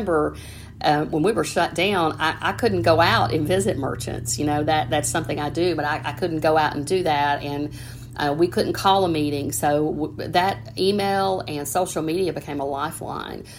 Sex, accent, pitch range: female, American, 145-160 Hz